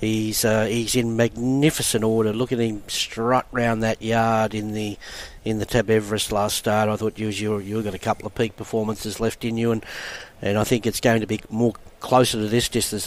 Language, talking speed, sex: English, 220 wpm, male